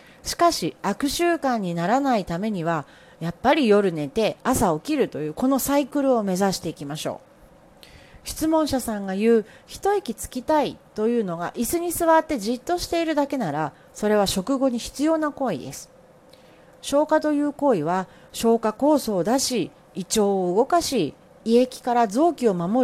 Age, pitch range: 40-59, 180-275 Hz